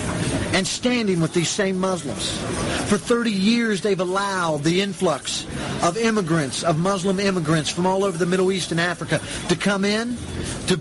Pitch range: 150-195 Hz